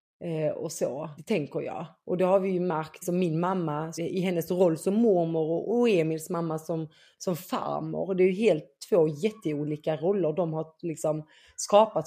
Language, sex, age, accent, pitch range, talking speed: Swedish, female, 30-49, native, 160-195 Hz, 185 wpm